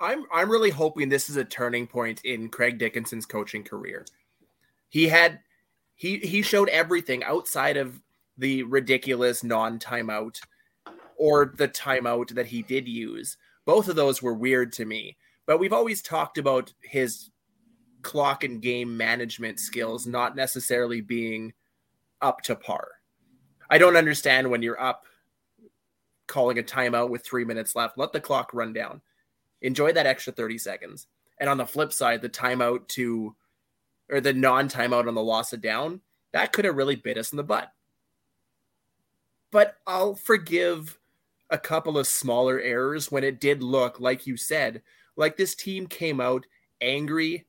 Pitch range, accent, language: 120-150 Hz, American, English